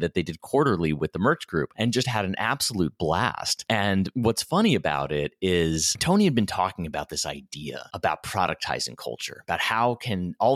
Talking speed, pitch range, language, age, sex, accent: 195 wpm, 85-115 Hz, English, 30-49, male, American